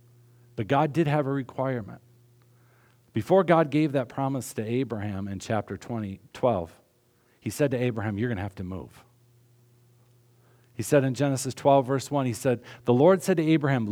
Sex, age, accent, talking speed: male, 50-69, American, 175 wpm